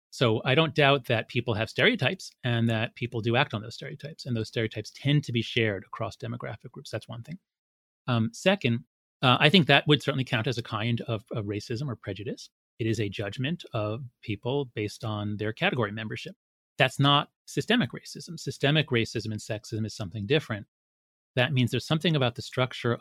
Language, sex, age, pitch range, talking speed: English, male, 30-49, 115-145 Hz, 195 wpm